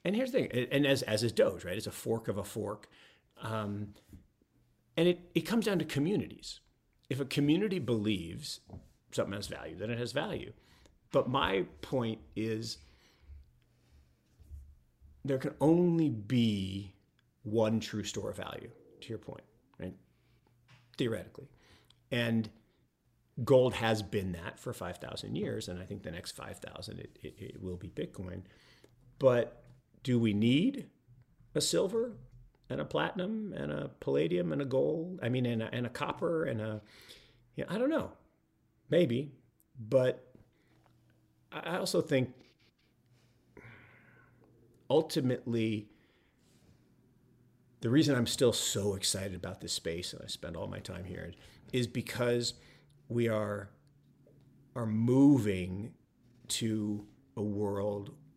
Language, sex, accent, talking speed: English, male, American, 135 wpm